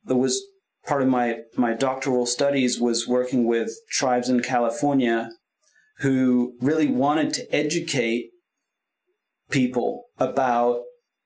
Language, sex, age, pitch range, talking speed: English, male, 30-49, 120-140 Hz, 110 wpm